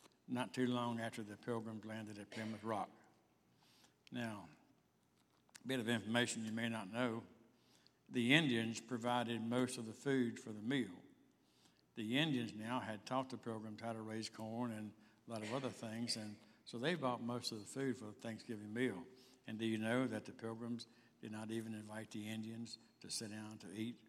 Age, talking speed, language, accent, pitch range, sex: 60-79, 190 wpm, English, American, 105-120 Hz, male